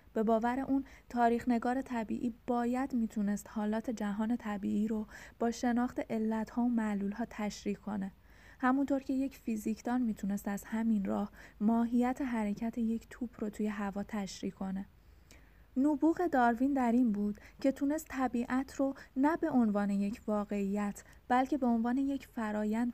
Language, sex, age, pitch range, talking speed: Persian, female, 20-39, 205-255 Hz, 145 wpm